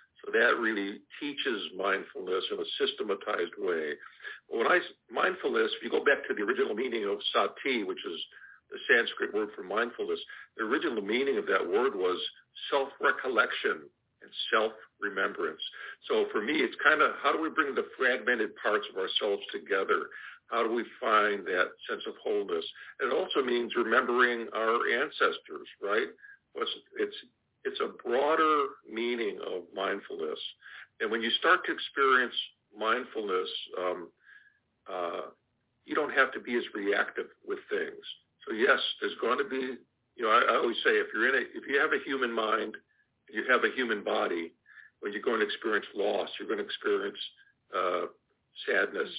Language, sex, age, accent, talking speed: English, male, 50-69, American, 165 wpm